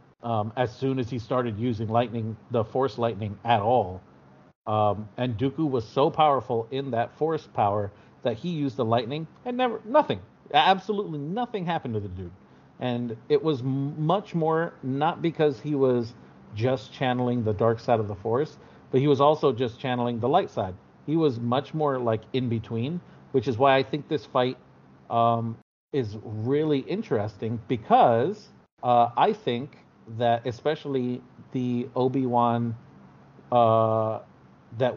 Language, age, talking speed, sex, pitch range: English, 40-59, 155 wpm, male, 110-135 Hz